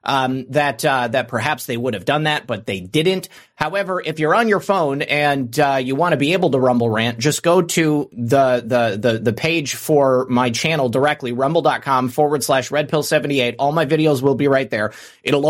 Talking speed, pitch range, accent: 205 wpm, 125-160 Hz, American